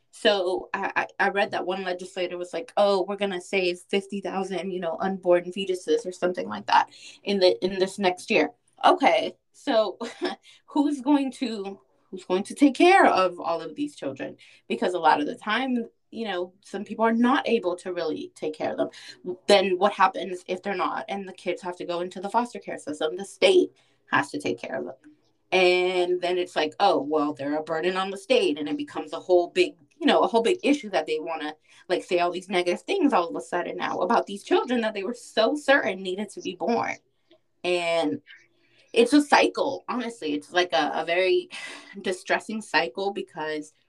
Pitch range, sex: 175-220 Hz, female